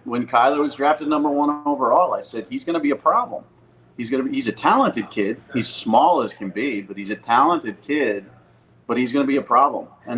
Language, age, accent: English, 40-59, American